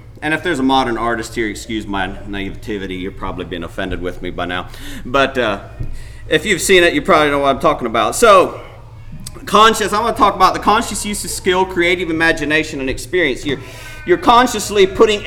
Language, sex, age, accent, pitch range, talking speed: English, male, 40-59, American, 115-175 Hz, 200 wpm